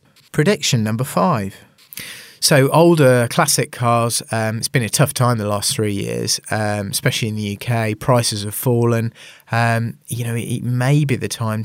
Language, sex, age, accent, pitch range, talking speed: English, male, 30-49, British, 105-125 Hz, 175 wpm